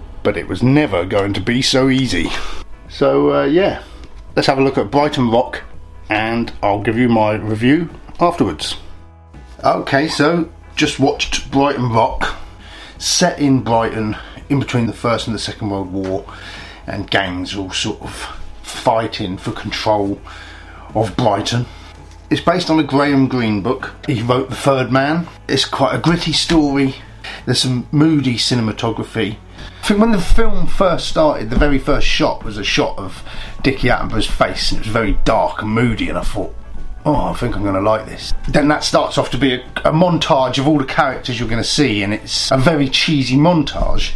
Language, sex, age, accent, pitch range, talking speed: English, male, 40-59, British, 100-140 Hz, 180 wpm